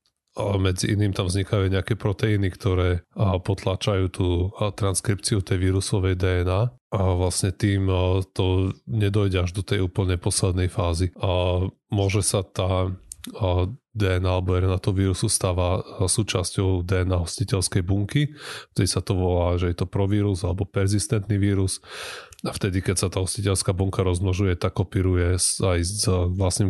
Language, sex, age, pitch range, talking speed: Slovak, male, 30-49, 90-100 Hz, 140 wpm